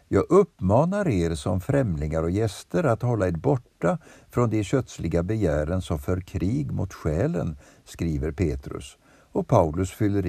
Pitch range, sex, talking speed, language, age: 75-115 Hz, male, 145 wpm, Swedish, 60-79